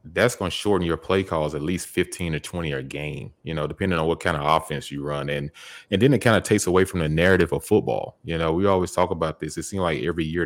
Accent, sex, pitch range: American, male, 75-85 Hz